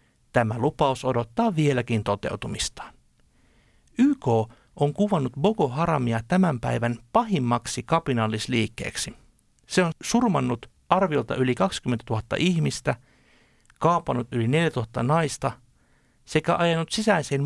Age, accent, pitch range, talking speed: 60-79, native, 120-170 Hz, 105 wpm